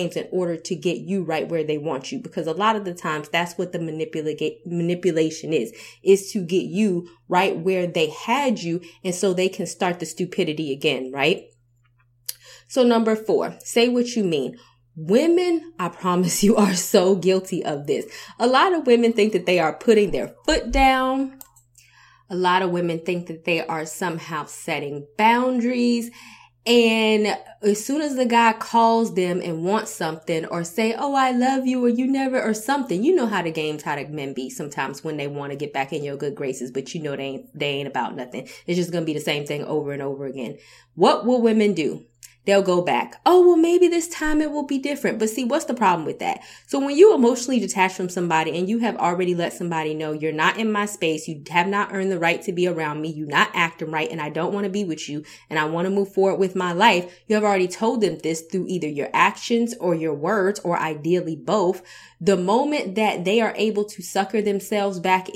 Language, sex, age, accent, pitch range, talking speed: English, female, 20-39, American, 160-220 Hz, 220 wpm